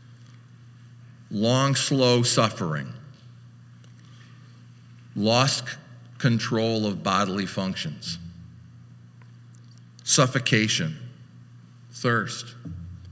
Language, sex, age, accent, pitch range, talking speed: English, male, 50-69, American, 100-135 Hz, 45 wpm